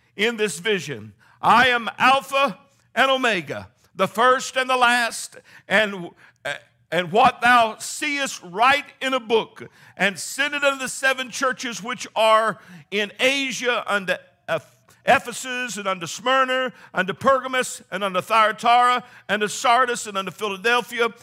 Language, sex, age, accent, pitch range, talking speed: English, male, 60-79, American, 215-275 Hz, 140 wpm